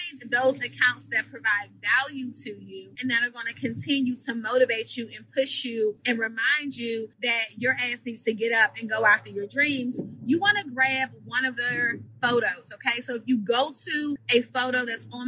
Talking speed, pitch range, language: 205 wpm, 235-280 Hz, English